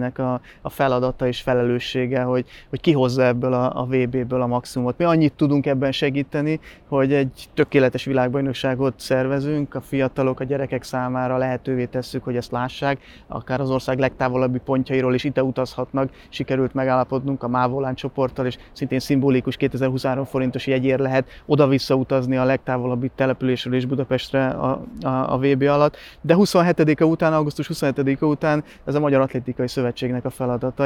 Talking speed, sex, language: 140 wpm, male, Hungarian